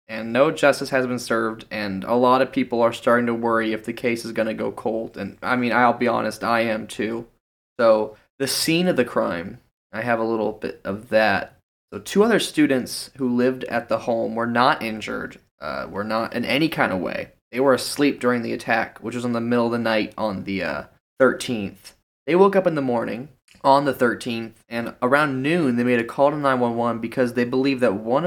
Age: 20-39